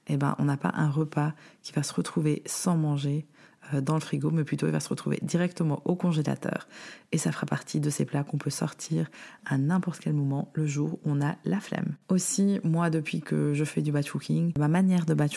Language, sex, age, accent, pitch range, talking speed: French, female, 20-39, French, 145-175 Hz, 235 wpm